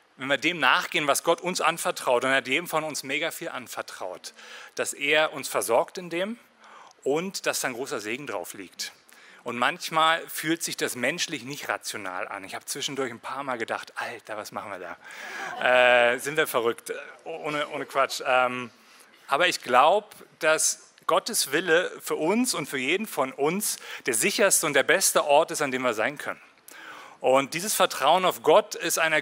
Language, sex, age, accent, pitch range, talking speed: German, male, 30-49, German, 135-175 Hz, 185 wpm